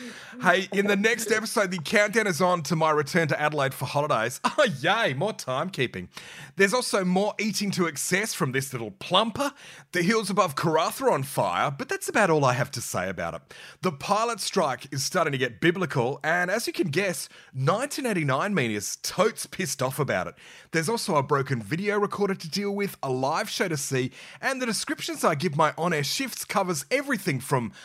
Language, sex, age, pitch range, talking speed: English, male, 30-49, 135-205 Hz, 200 wpm